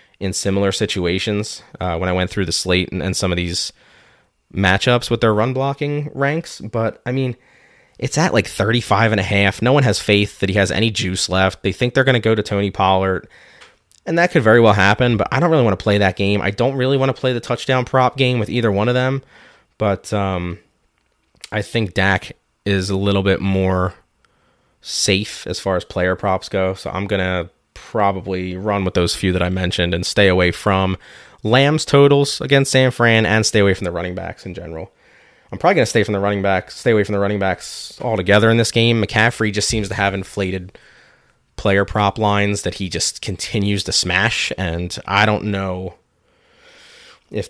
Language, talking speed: English, 210 wpm